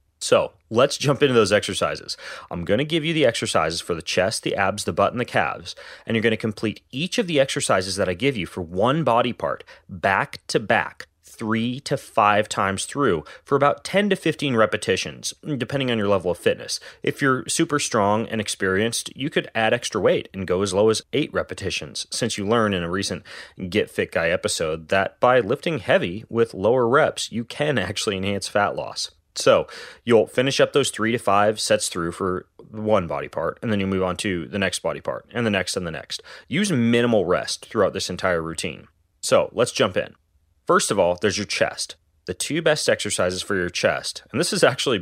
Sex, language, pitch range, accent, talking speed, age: male, English, 90-135 Hz, American, 215 wpm, 30-49